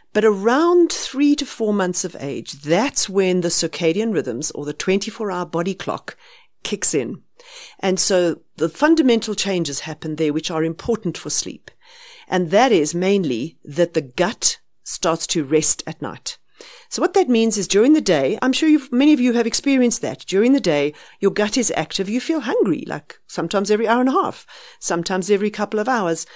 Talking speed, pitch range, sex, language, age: 185 wpm, 170-260 Hz, female, English, 50-69